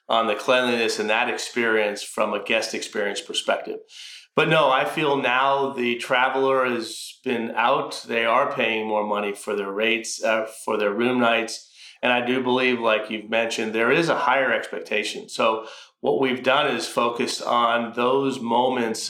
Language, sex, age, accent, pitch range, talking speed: English, male, 40-59, American, 110-130 Hz, 175 wpm